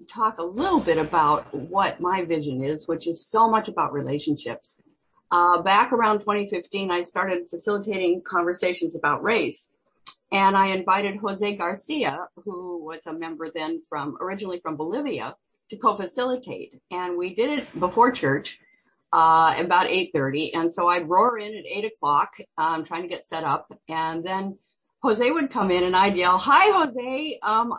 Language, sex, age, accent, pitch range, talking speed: English, female, 50-69, American, 170-230 Hz, 165 wpm